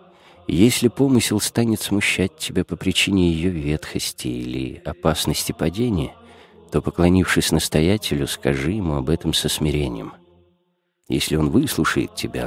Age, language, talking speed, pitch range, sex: 50-69, Russian, 120 wpm, 75-95 Hz, male